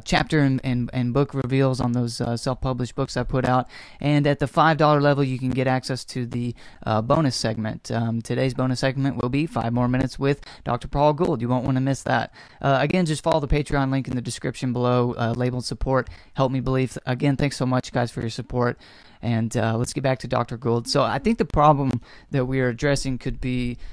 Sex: male